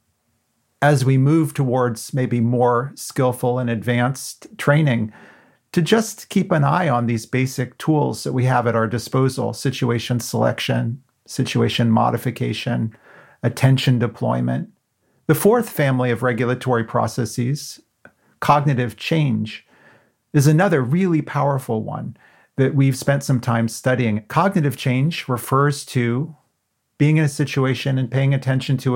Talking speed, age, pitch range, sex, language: 130 wpm, 40-59, 120-150 Hz, male, English